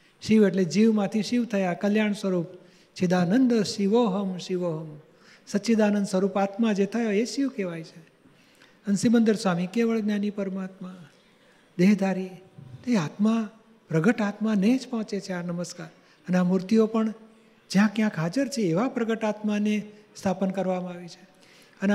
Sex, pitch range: male, 180-210 Hz